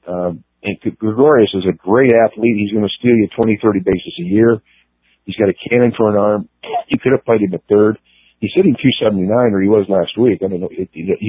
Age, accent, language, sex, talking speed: 50-69, American, English, male, 240 wpm